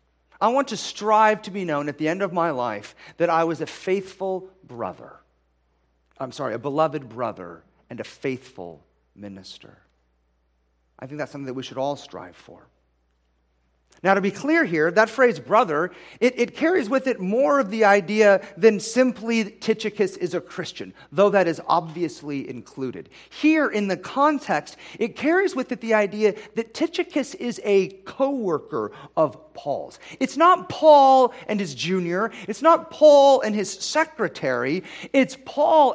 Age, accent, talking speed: 40-59, American, 160 wpm